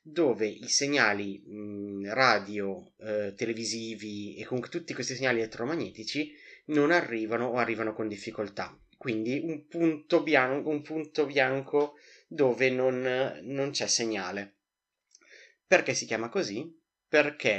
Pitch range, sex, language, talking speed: 110-145 Hz, male, Italian, 115 wpm